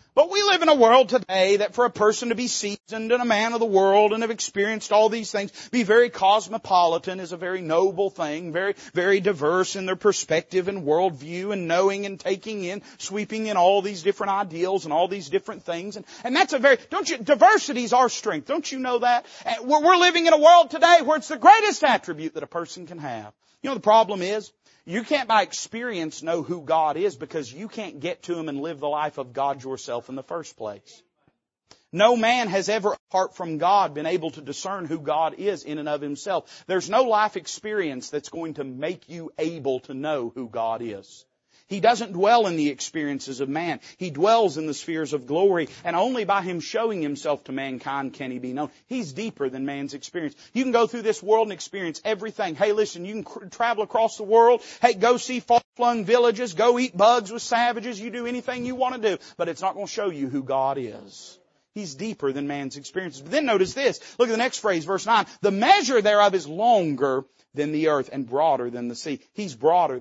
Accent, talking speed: American, 220 wpm